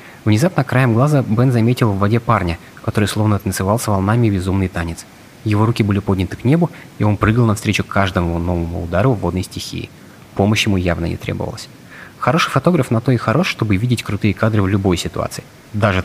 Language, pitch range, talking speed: Russian, 100-120 Hz, 185 wpm